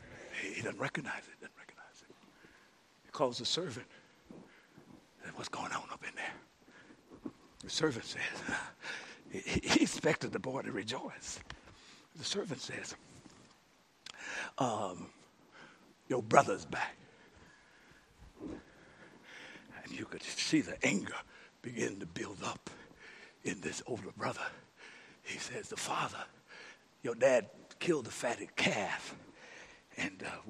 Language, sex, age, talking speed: English, male, 60-79, 125 wpm